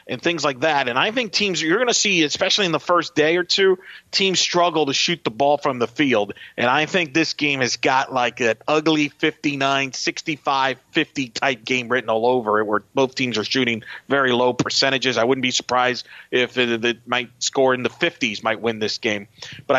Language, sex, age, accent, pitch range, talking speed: English, male, 40-59, American, 135-190 Hz, 210 wpm